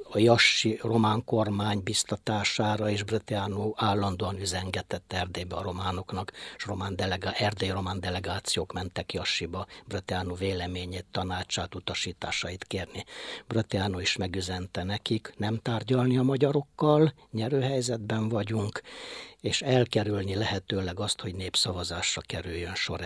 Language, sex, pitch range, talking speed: Hungarian, male, 90-115 Hz, 110 wpm